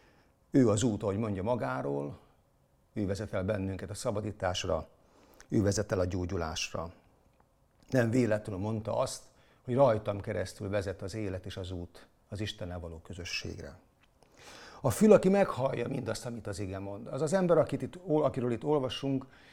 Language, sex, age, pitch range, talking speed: Hungarian, male, 50-69, 95-125 Hz, 155 wpm